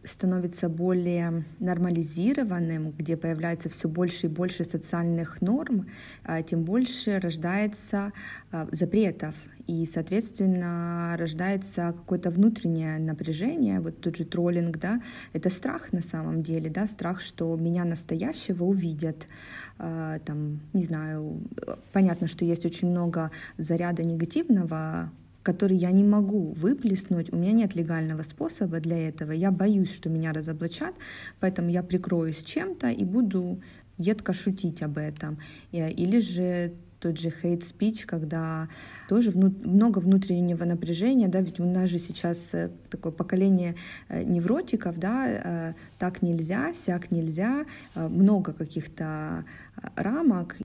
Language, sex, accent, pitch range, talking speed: Ukrainian, female, native, 165-195 Hz, 120 wpm